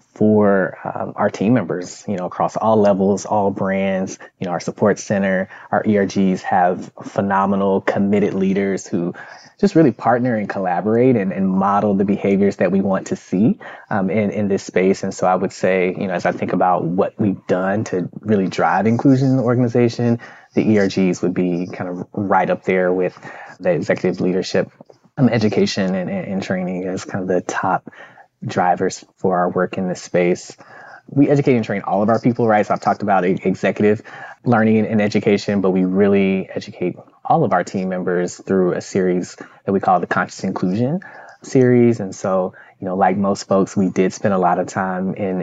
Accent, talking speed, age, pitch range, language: American, 195 wpm, 20-39, 95-115 Hz, English